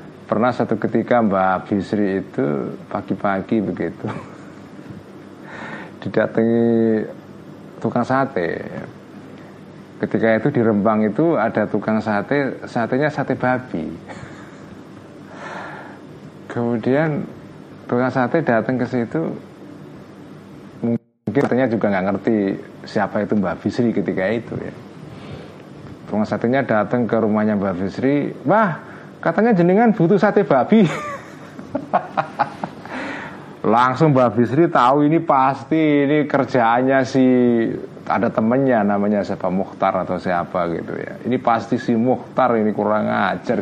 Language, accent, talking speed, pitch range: Indonesian, native, 105 wpm, 105-135 Hz